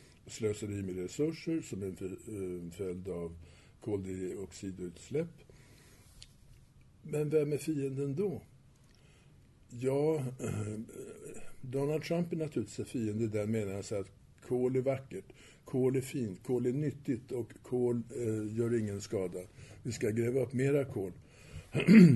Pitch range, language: 105-130 Hz, Swedish